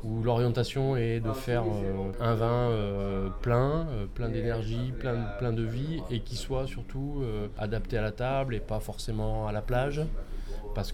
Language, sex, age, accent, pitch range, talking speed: French, male, 20-39, French, 110-130 Hz, 180 wpm